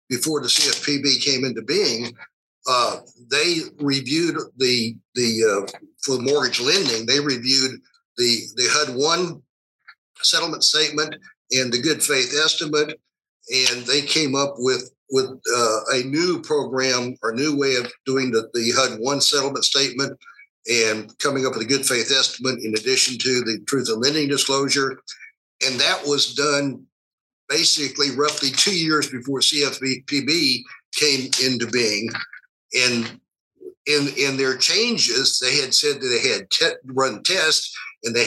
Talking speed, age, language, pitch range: 145 wpm, 60-79, English, 130-155 Hz